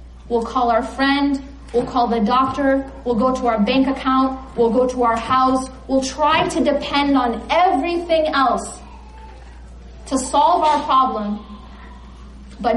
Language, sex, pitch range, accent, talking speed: English, female, 215-280 Hz, American, 145 wpm